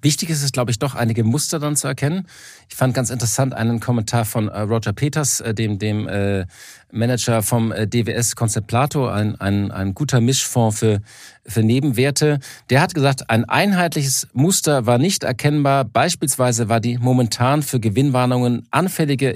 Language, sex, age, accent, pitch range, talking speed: German, male, 40-59, German, 115-145 Hz, 160 wpm